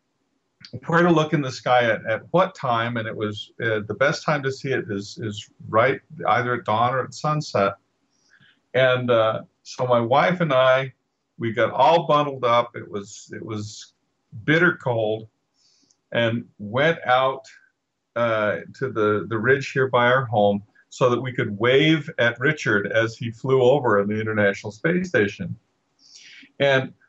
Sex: male